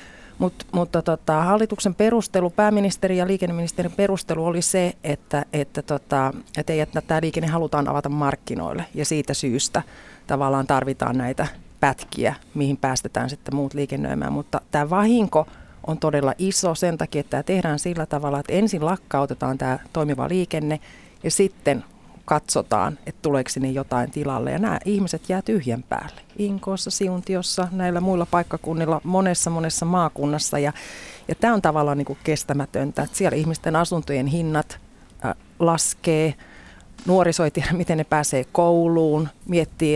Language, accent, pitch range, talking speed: Finnish, native, 145-175 Hz, 135 wpm